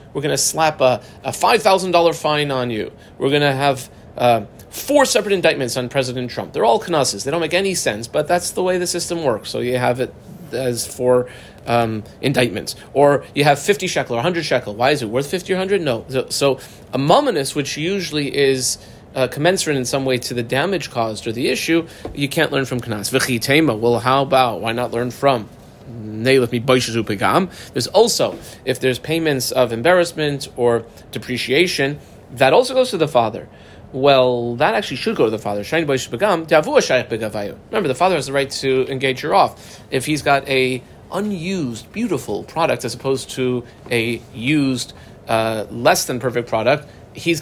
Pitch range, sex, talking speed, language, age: 120-150 Hz, male, 180 wpm, English, 30-49